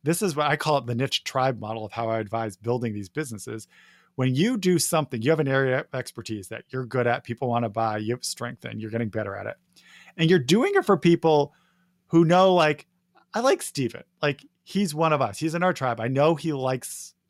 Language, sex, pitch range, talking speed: English, male, 120-165 Hz, 235 wpm